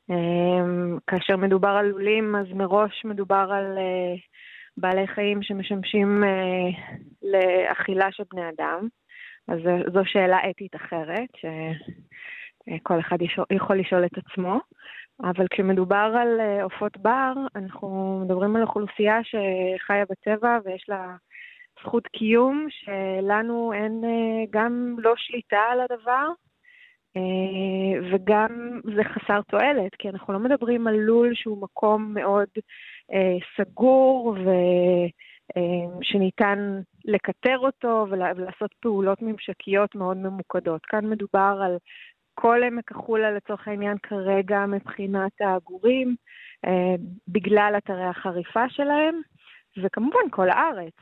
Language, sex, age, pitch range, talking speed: Hebrew, female, 20-39, 185-225 Hz, 120 wpm